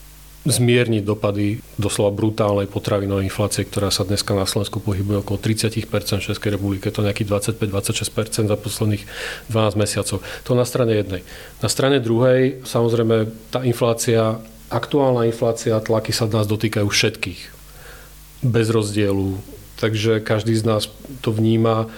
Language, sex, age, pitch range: Czech, male, 40-59, 105-115 Hz